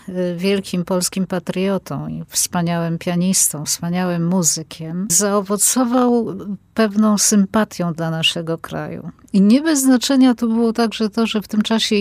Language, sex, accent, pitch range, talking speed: Polish, female, native, 175-220 Hz, 130 wpm